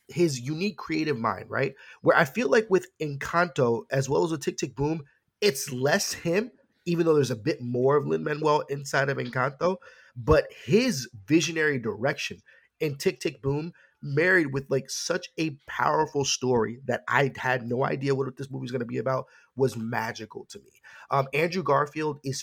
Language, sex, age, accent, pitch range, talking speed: English, male, 30-49, American, 135-165 Hz, 185 wpm